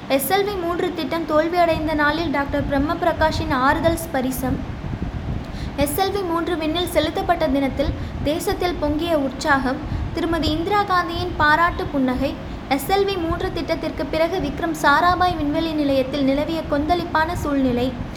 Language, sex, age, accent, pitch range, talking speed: Tamil, female, 20-39, native, 280-340 Hz, 110 wpm